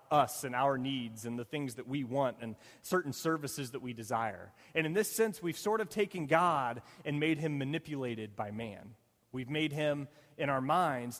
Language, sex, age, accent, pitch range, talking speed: English, male, 30-49, American, 125-160 Hz, 200 wpm